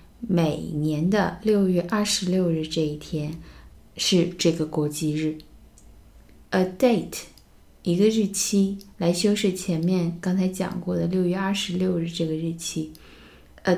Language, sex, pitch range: Chinese, female, 160-195 Hz